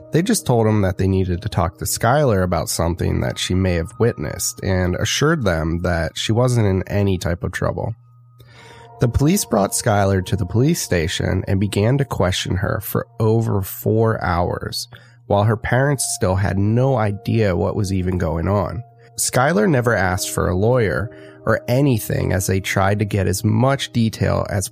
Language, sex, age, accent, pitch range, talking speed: English, male, 30-49, American, 95-125 Hz, 180 wpm